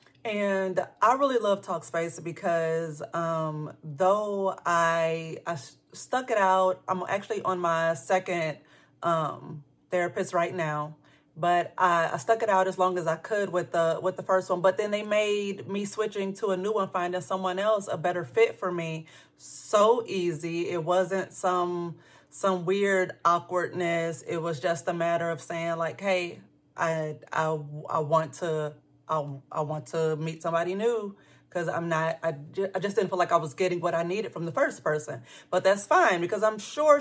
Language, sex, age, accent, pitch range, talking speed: English, female, 30-49, American, 165-200 Hz, 180 wpm